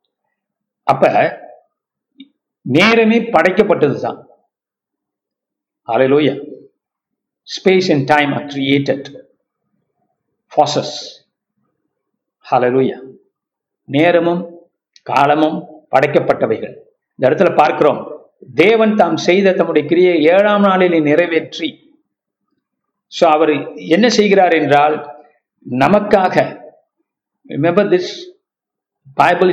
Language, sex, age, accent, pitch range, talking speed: Tamil, male, 60-79, native, 155-220 Hz, 45 wpm